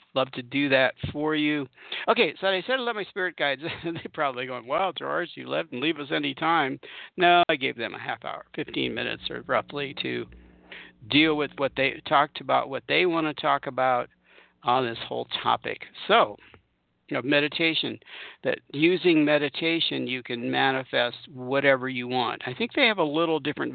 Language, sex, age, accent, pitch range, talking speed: English, male, 60-79, American, 125-170 Hz, 190 wpm